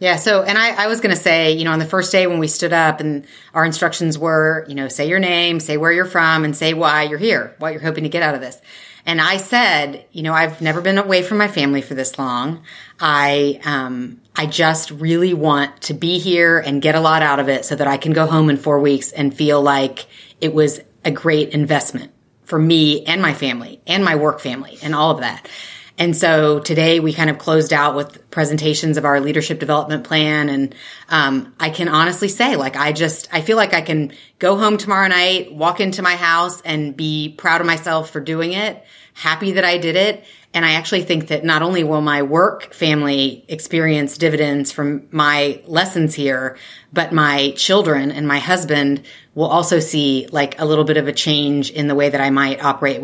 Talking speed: 225 wpm